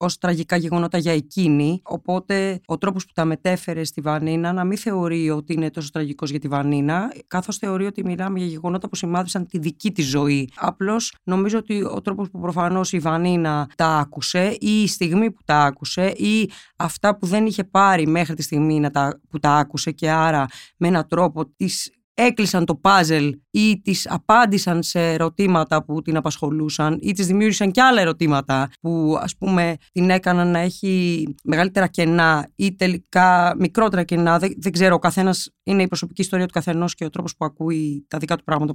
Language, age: Greek, 20-39